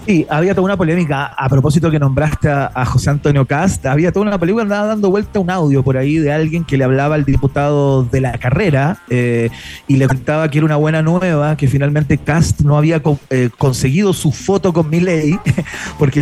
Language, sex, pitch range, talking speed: Spanish, male, 130-165 Hz, 210 wpm